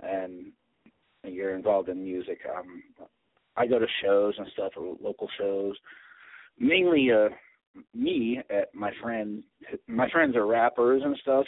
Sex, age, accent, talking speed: male, 40-59, American, 140 wpm